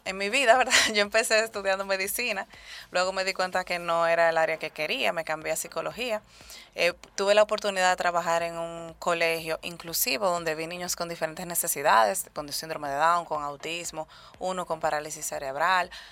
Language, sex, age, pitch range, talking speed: Spanish, female, 20-39, 160-185 Hz, 185 wpm